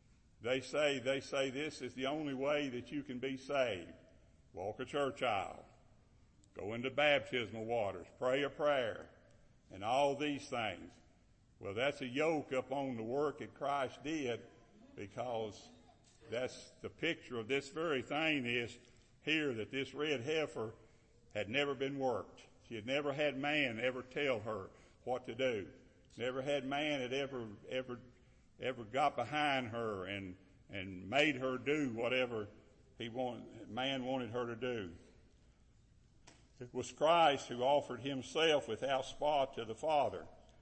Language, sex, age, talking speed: English, male, 60-79, 150 wpm